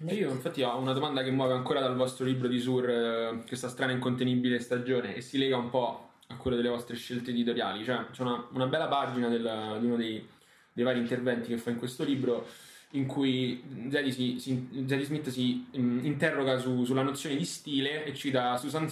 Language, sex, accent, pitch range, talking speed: Italian, male, native, 125-150 Hz, 210 wpm